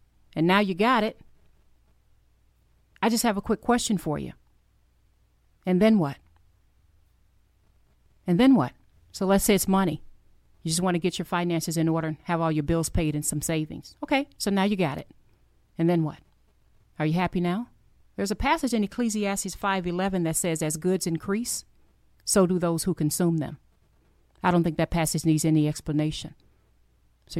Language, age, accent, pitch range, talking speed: English, 40-59, American, 150-185 Hz, 175 wpm